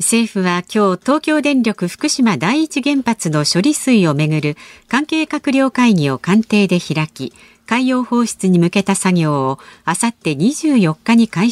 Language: Japanese